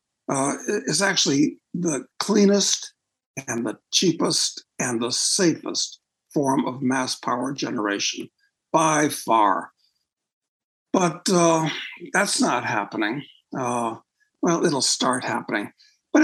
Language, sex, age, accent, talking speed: English, male, 60-79, American, 105 wpm